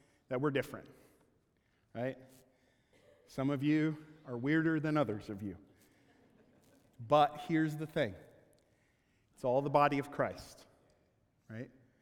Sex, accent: male, American